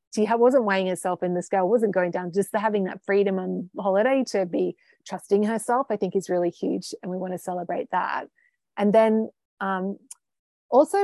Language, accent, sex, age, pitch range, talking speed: English, Australian, female, 30-49, 185-255 Hz, 190 wpm